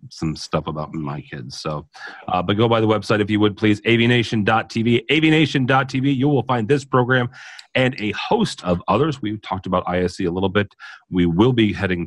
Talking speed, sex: 195 wpm, male